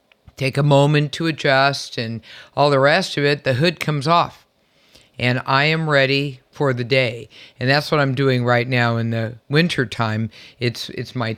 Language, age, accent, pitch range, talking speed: English, 50-69, American, 135-175 Hz, 190 wpm